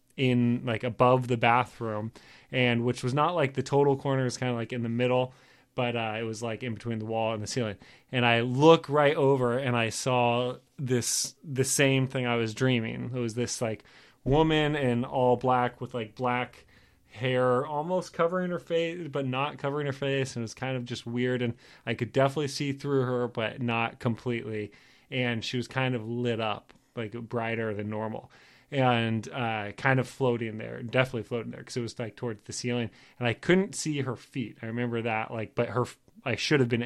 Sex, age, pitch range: male, 20-39, 115-135 Hz